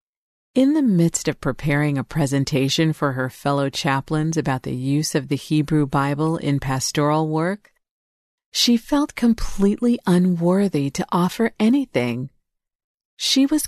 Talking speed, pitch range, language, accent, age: 130 wpm, 150-195 Hz, English, American, 40-59